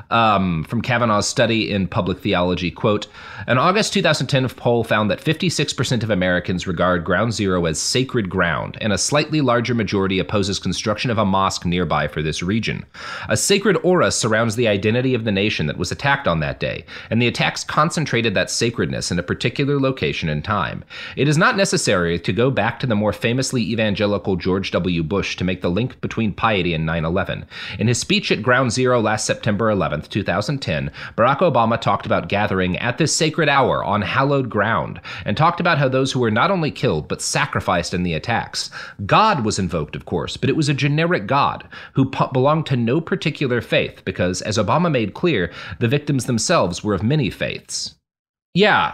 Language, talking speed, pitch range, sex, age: English, 190 wpm, 95-130 Hz, male, 30-49